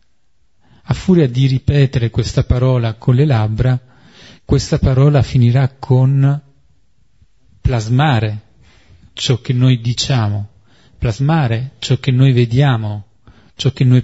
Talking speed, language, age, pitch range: 110 wpm, Italian, 40-59, 110-135 Hz